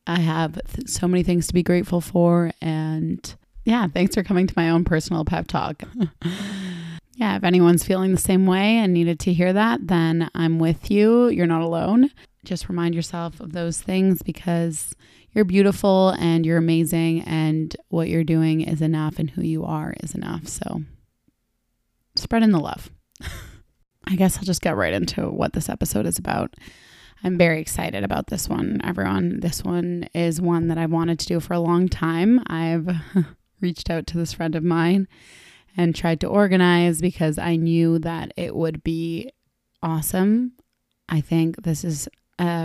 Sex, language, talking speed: female, English, 175 wpm